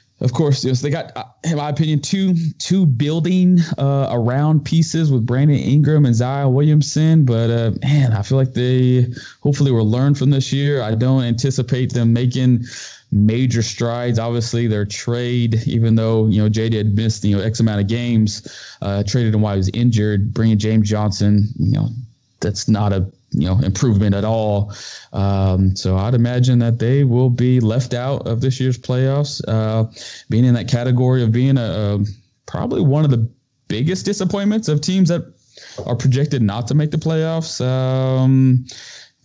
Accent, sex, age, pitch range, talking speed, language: American, male, 20-39, 105-135 Hz, 185 wpm, English